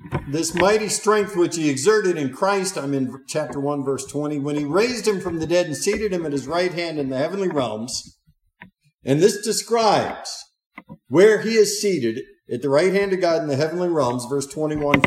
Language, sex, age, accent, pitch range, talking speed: English, male, 50-69, American, 145-210 Hz, 205 wpm